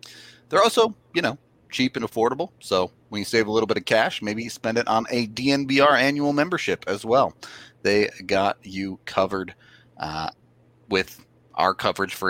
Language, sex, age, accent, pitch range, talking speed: English, male, 30-49, American, 95-120 Hz, 175 wpm